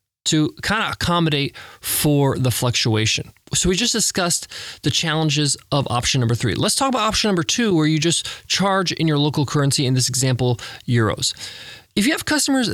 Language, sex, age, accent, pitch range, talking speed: English, male, 20-39, American, 130-175 Hz, 185 wpm